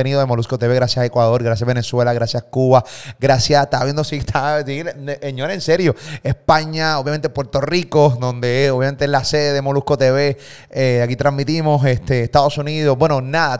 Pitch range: 120-150 Hz